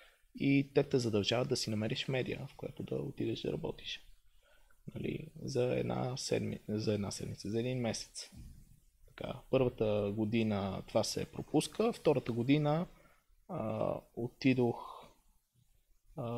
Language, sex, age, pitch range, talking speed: Bulgarian, male, 20-39, 105-140 Hz, 125 wpm